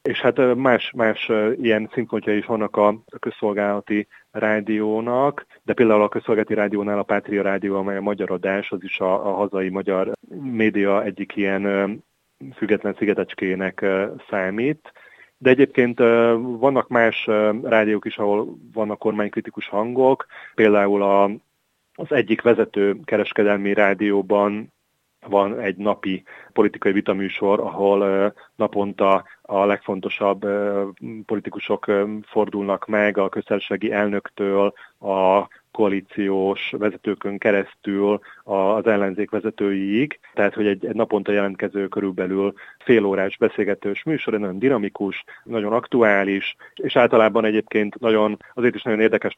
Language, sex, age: Hungarian, male, 30-49